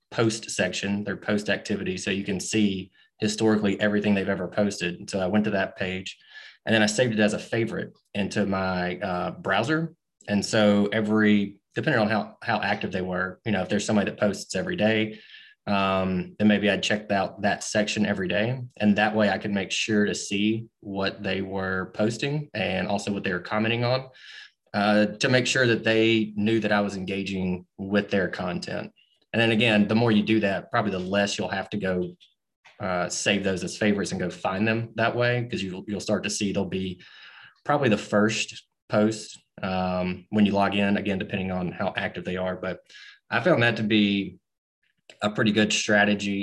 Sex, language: male, English